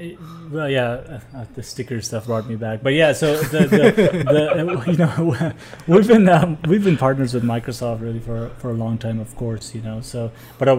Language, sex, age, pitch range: English, male, 20-39, 120-135 Hz